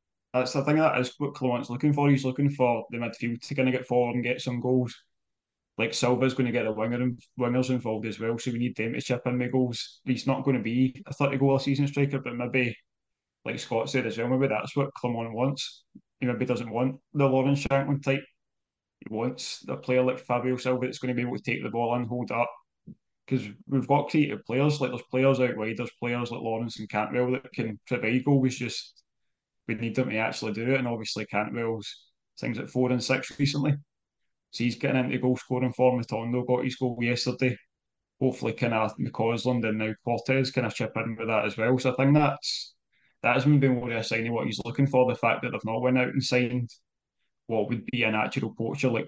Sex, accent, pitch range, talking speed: male, British, 115-130 Hz, 230 wpm